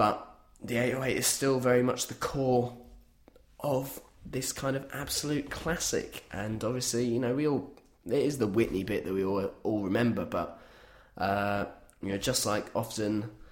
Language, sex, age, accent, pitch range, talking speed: English, male, 20-39, British, 95-125 Hz, 170 wpm